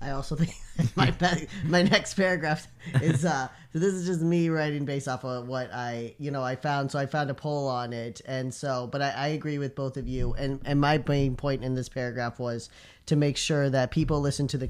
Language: English